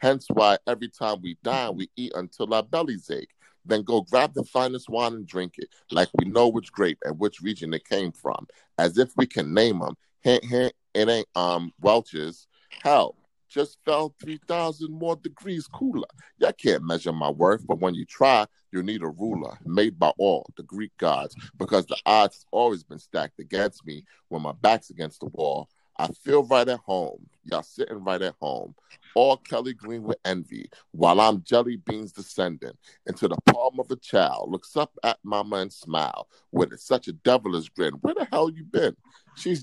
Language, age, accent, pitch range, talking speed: English, 30-49, American, 95-135 Hz, 195 wpm